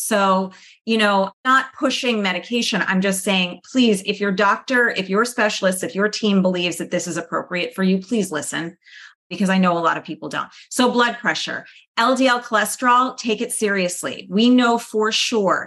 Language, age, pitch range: English, 30-49, 175-220 Hz